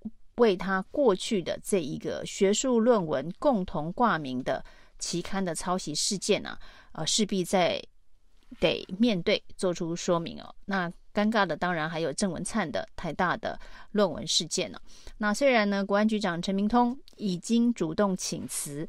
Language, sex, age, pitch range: Chinese, female, 30-49, 175-220 Hz